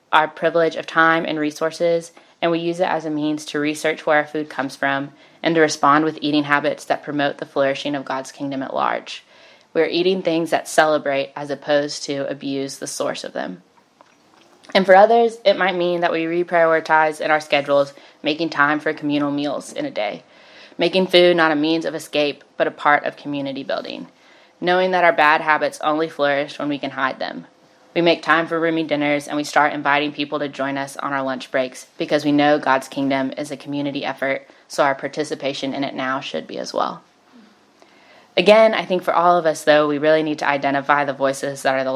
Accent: American